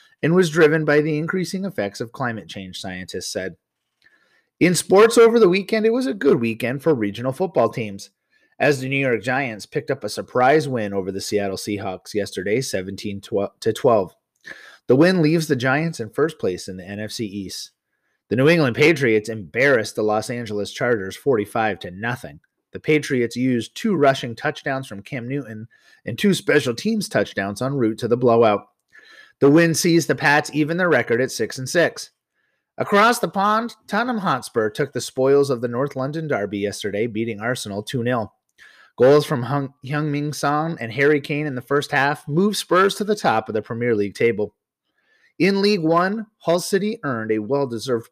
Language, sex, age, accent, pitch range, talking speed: English, male, 30-49, American, 110-160 Hz, 175 wpm